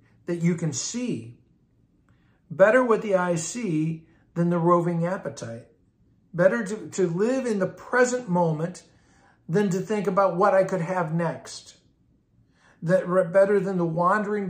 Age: 50-69